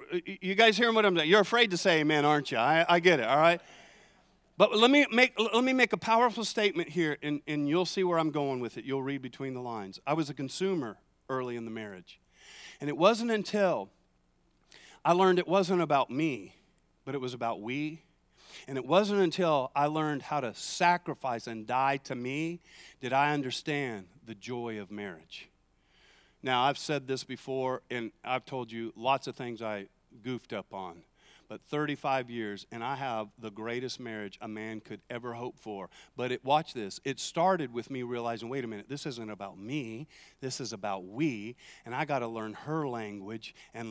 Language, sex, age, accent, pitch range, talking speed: English, male, 40-59, American, 110-160 Hz, 200 wpm